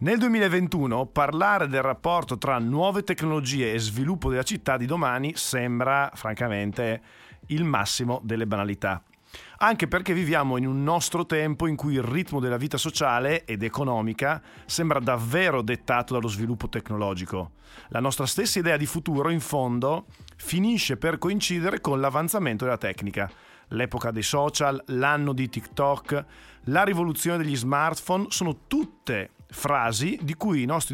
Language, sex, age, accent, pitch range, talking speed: Italian, male, 40-59, native, 115-165 Hz, 145 wpm